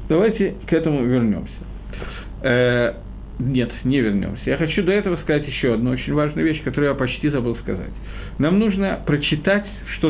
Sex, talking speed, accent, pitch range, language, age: male, 160 wpm, native, 120-180 Hz, Russian, 50-69